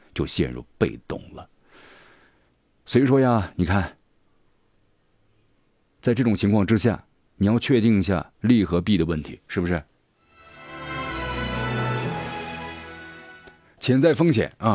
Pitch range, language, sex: 80-110 Hz, Chinese, male